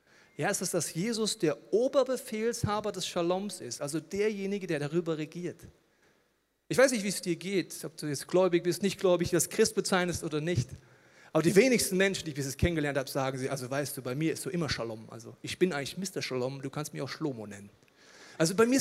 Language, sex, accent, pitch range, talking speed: German, male, German, 145-190 Hz, 225 wpm